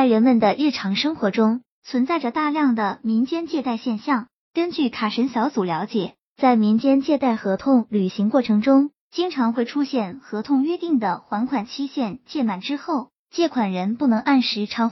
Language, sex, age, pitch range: Chinese, male, 20-39, 215-280 Hz